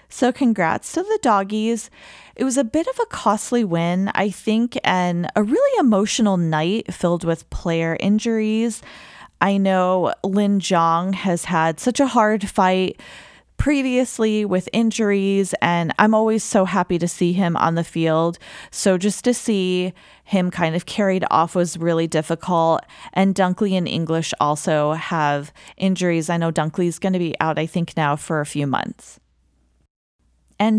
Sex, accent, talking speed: female, American, 160 wpm